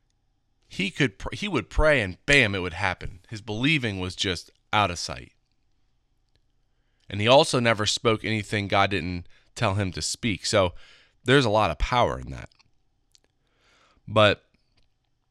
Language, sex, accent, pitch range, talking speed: English, male, American, 100-130 Hz, 150 wpm